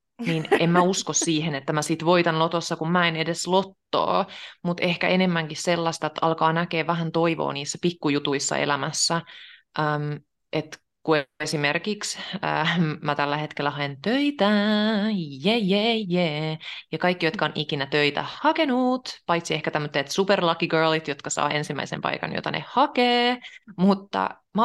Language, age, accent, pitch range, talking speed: Finnish, 30-49, native, 155-210 Hz, 150 wpm